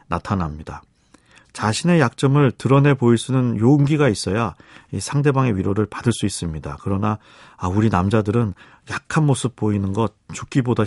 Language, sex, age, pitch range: Korean, male, 40-59, 100-130 Hz